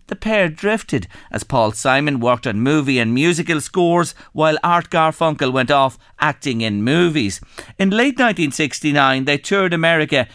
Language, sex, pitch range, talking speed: English, male, 125-180 Hz, 150 wpm